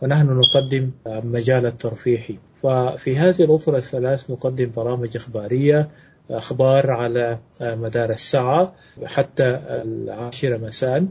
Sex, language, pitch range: male, Arabic, 120-155 Hz